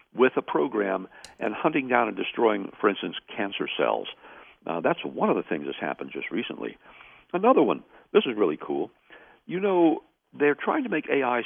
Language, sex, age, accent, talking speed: English, male, 60-79, American, 185 wpm